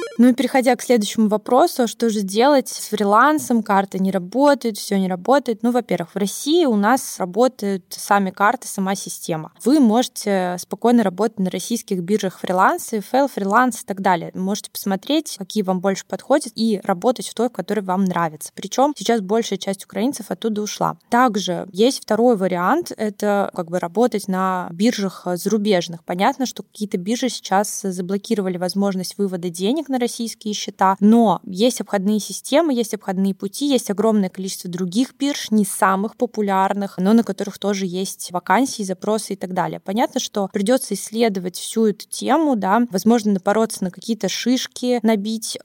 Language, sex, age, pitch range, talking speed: Russian, female, 20-39, 190-235 Hz, 165 wpm